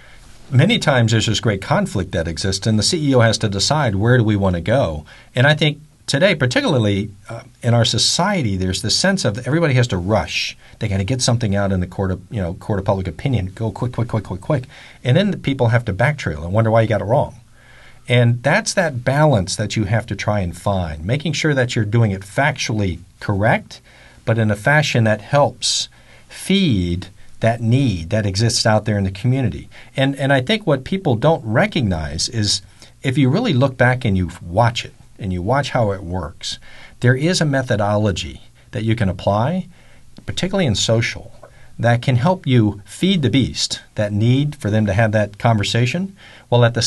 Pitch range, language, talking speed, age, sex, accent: 100-130 Hz, English, 205 wpm, 50-69, male, American